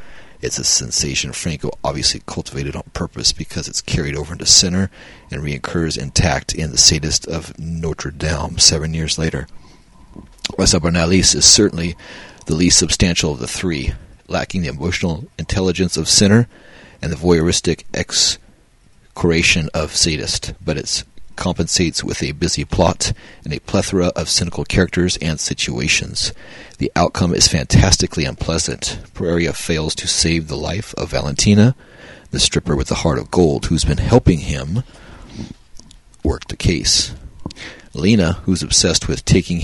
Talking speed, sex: 145 wpm, male